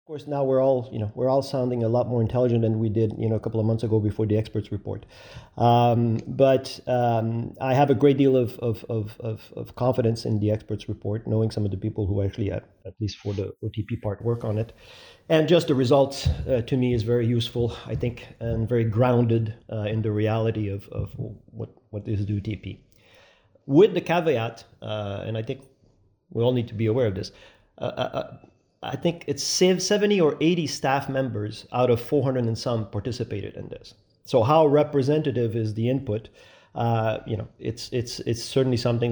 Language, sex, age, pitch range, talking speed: English, male, 40-59, 105-125 Hz, 210 wpm